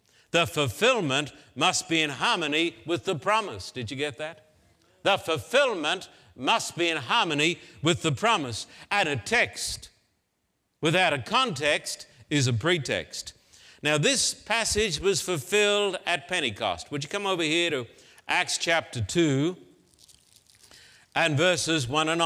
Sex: male